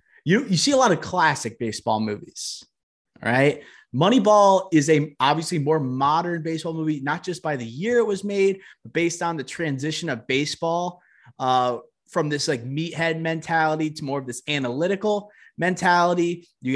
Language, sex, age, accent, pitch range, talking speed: English, male, 20-39, American, 140-175 Hz, 165 wpm